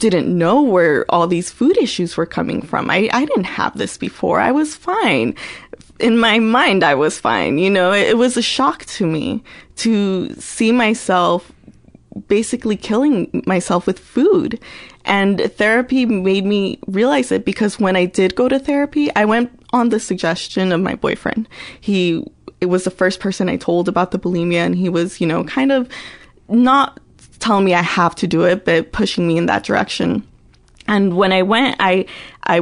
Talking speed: 185 wpm